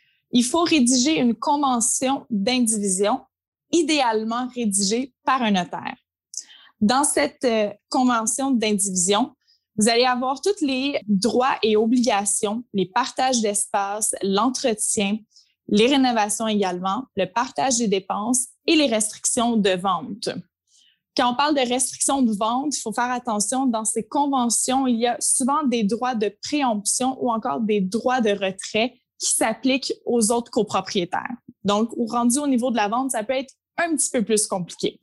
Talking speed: 150 wpm